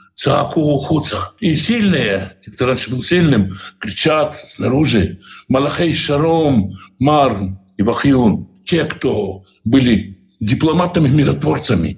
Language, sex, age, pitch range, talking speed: Russian, male, 60-79, 125-165 Hz, 90 wpm